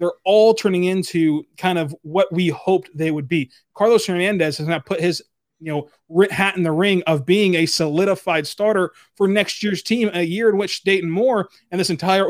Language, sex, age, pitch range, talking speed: English, male, 20-39, 165-205 Hz, 205 wpm